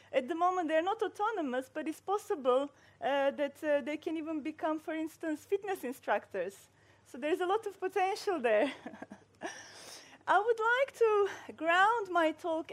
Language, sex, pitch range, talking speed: English, female, 275-365 Hz, 165 wpm